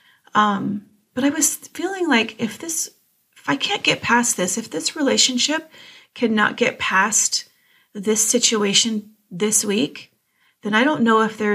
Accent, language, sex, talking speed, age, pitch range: American, English, female, 155 wpm, 30-49, 200-240 Hz